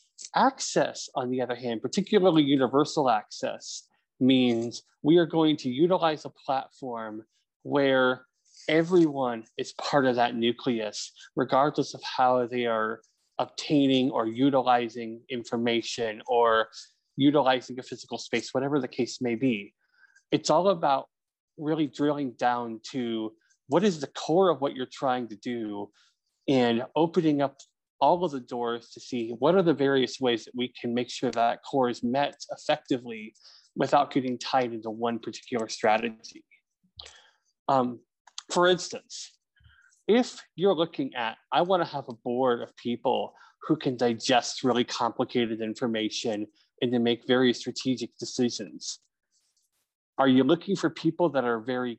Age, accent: 20-39, American